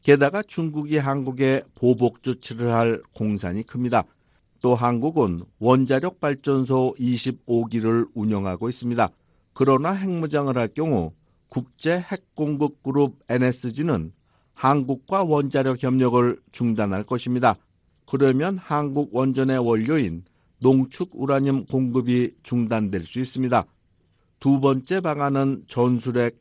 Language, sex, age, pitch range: Korean, male, 50-69, 115-145 Hz